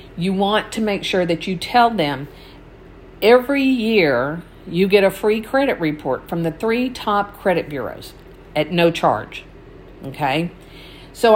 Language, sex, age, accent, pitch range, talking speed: English, female, 50-69, American, 165-230 Hz, 150 wpm